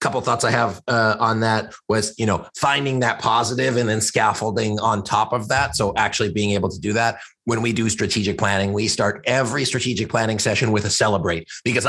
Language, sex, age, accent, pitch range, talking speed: English, male, 30-49, American, 105-125 Hz, 215 wpm